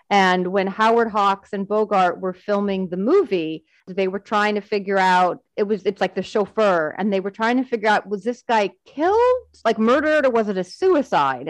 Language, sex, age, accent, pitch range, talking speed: English, female, 30-49, American, 185-235 Hz, 210 wpm